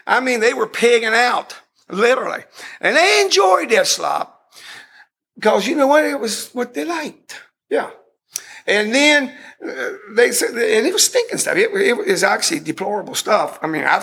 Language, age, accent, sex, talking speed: English, 50-69, American, male, 165 wpm